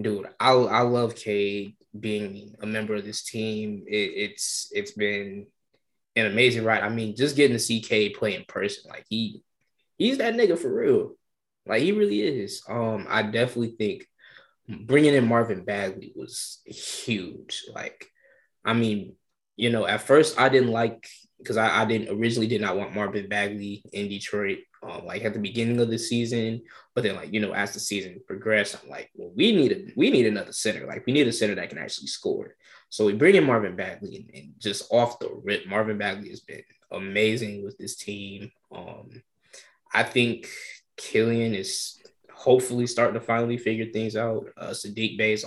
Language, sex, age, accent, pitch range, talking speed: English, male, 10-29, American, 105-120 Hz, 190 wpm